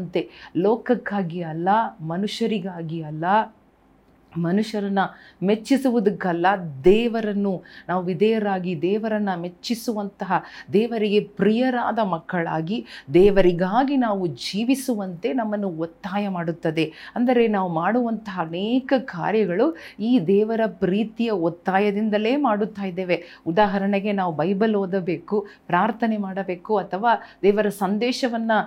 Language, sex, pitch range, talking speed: Kannada, female, 180-225 Hz, 85 wpm